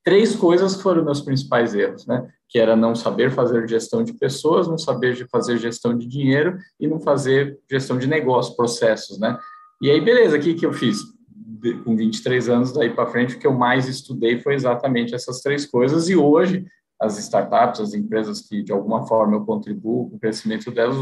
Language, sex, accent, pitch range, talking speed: Portuguese, male, Brazilian, 115-165 Hz, 195 wpm